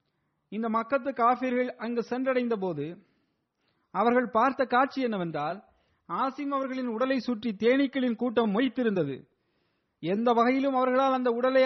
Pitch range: 195-255 Hz